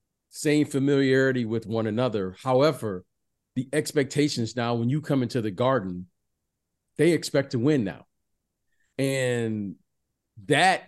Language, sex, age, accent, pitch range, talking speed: English, male, 40-59, American, 115-150 Hz, 120 wpm